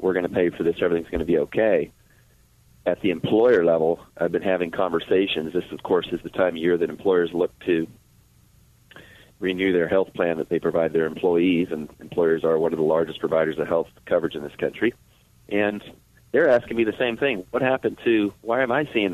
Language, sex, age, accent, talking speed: English, male, 40-59, American, 215 wpm